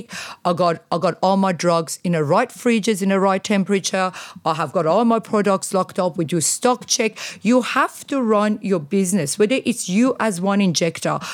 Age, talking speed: 50-69, 205 wpm